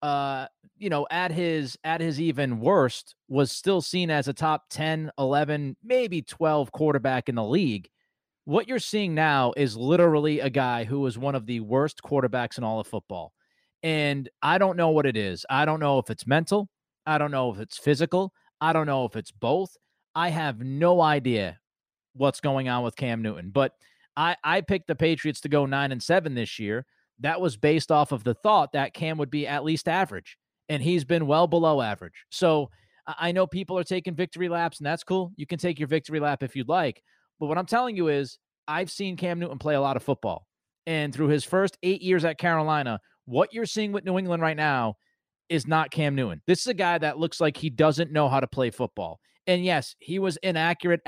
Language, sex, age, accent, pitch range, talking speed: English, male, 30-49, American, 135-170 Hz, 215 wpm